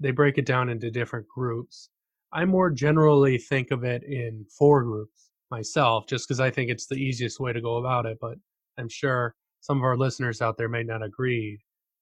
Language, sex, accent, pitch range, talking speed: English, male, American, 120-145 Hz, 205 wpm